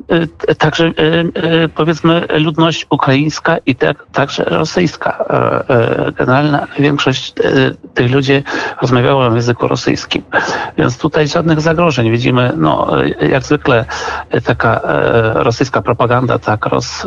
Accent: native